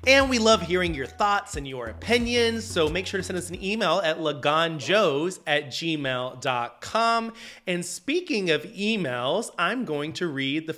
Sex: male